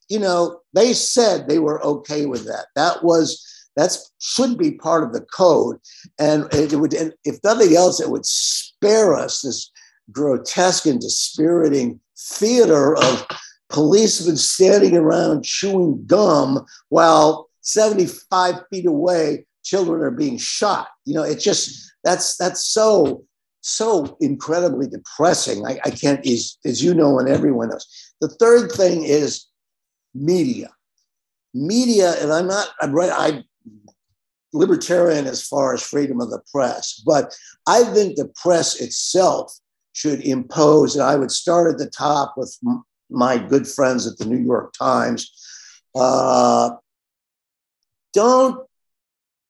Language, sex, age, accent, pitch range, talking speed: English, male, 50-69, American, 145-215 Hz, 140 wpm